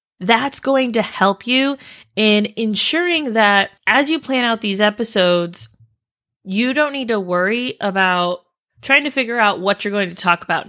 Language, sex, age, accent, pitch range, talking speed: English, female, 20-39, American, 195-245 Hz, 170 wpm